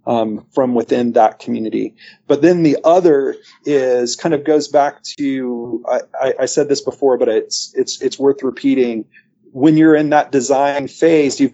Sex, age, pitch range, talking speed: male, 30-49, 130-175 Hz, 175 wpm